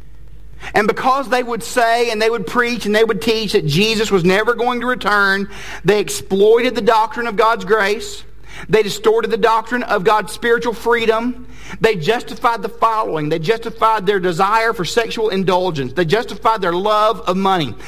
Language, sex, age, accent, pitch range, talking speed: English, male, 50-69, American, 165-225 Hz, 175 wpm